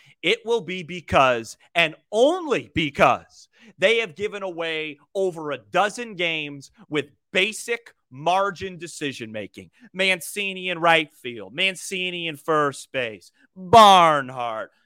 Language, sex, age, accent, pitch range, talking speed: English, male, 30-49, American, 165-235 Hz, 115 wpm